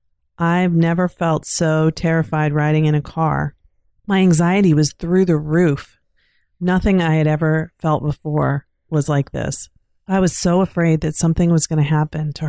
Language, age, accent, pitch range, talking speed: English, 30-49, American, 145-170 Hz, 170 wpm